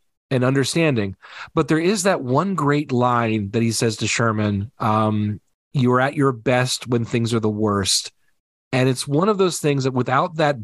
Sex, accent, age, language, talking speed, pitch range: male, American, 40-59, English, 185 wpm, 110-135 Hz